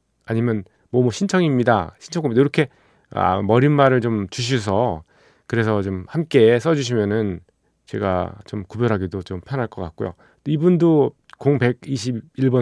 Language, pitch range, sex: Korean, 100-130 Hz, male